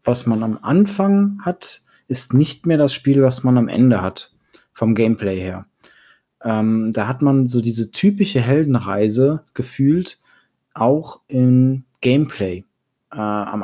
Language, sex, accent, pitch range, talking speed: German, male, German, 110-135 Hz, 140 wpm